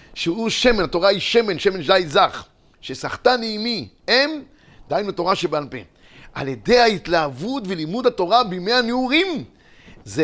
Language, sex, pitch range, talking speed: Hebrew, male, 165-250 Hz, 135 wpm